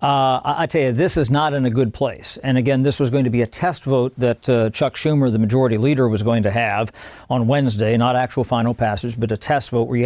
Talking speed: 260 wpm